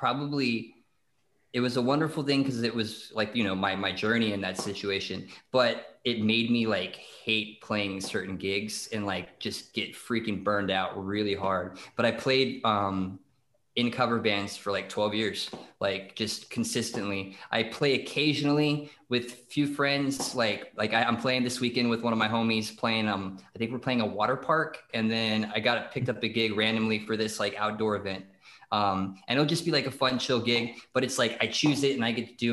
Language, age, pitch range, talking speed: English, 20-39, 105-120 Hz, 205 wpm